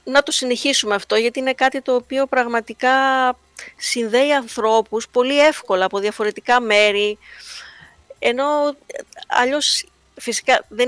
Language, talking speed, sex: Greek, 115 wpm, female